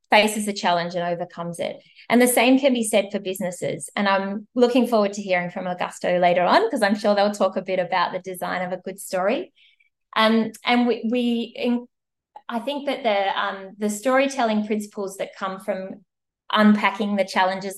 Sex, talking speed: female, 190 wpm